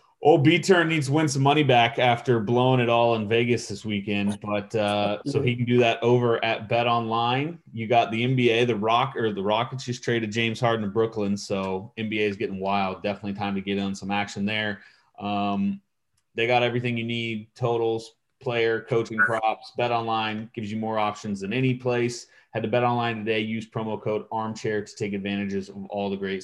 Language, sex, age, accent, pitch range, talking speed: English, male, 30-49, American, 105-125 Hz, 205 wpm